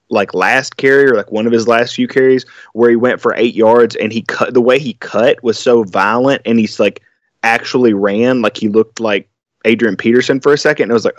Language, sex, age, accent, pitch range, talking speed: English, male, 20-39, American, 105-125 Hz, 235 wpm